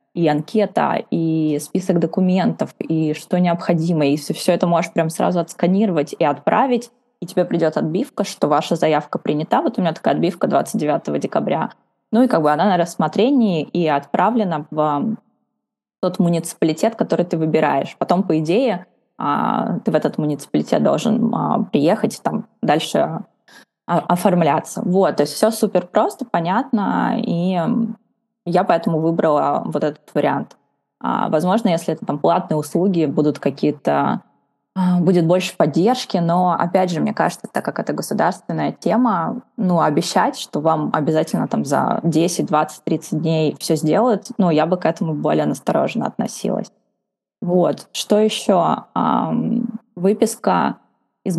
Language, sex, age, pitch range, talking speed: Russian, female, 20-39, 160-220 Hz, 140 wpm